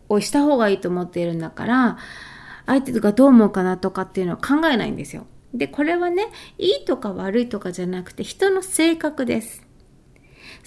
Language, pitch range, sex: Japanese, 195-295 Hz, female